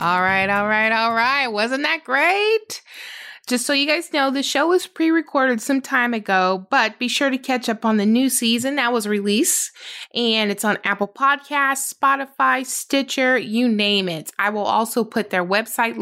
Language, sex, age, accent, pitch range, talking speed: English, female, 20-39, American, 185-275 Hz, 190 wpm